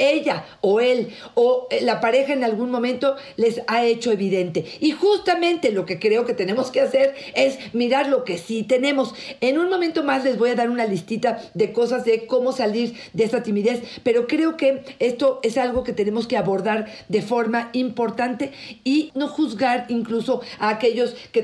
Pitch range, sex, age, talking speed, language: 225-265 Hz, female, 50-69, 185 wpm, Spanish